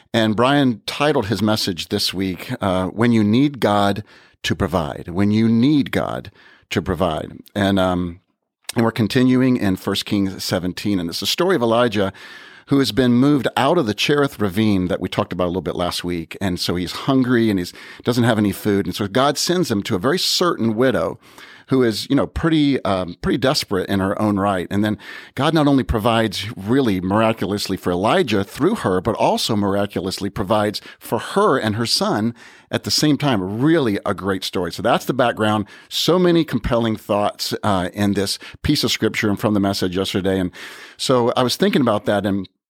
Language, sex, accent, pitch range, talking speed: English, male, American, 100-125 Hz, 200 wpm